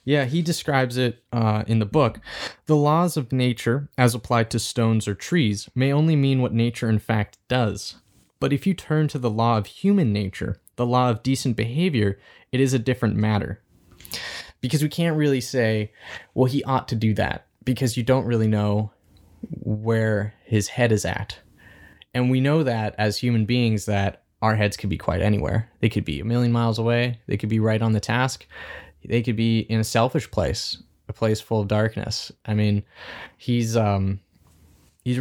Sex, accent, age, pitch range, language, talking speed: male, American, 20-39, 100-125 Hz, English, 190 wpm